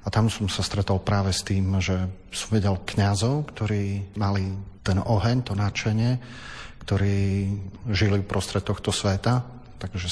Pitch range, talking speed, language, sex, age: 95-105 Hz, 150 wpm, Slovak, male, 40-59